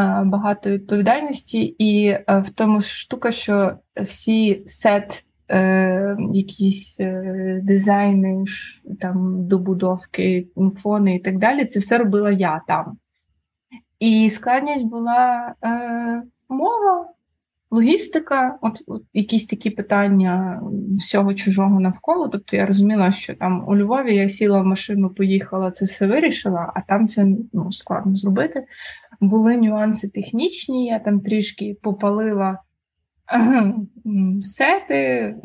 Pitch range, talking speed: 195-230 Hz, 115 wpm